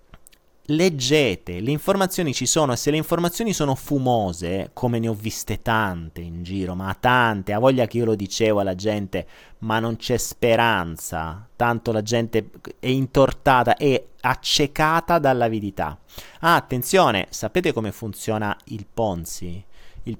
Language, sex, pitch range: Italian, male, 95-130 Hz